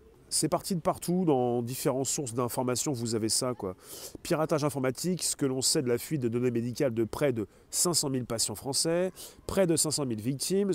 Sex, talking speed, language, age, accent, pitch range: male, 200 wpm, French, 30-49, French, 125-165 Hz